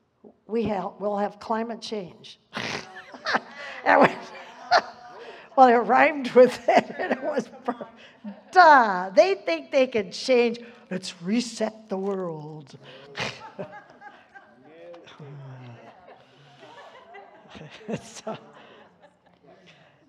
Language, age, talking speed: English, 60-79, 80 wpm